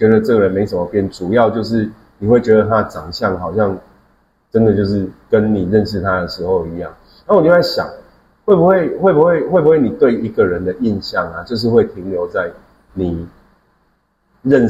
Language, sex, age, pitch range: Chinese, male, 30-49, 90-120 Hz